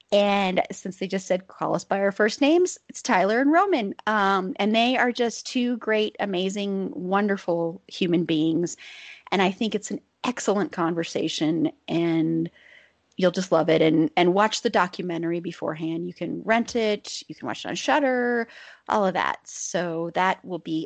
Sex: female